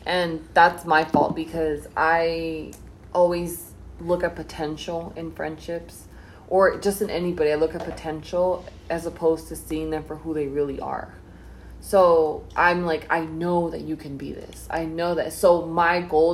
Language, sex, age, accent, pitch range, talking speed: English, female, 20-39, American, 150-175 Hz, 170 wpm